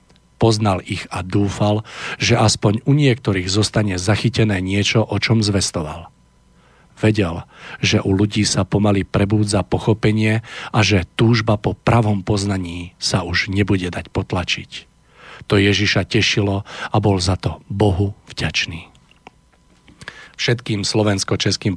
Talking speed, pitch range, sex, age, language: 120 wpm, 90-105 Hz, male, 40-59, Slovak